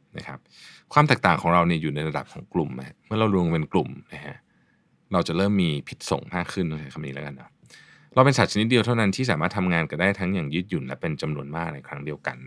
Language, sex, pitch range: Thai, male, 80-110 Hz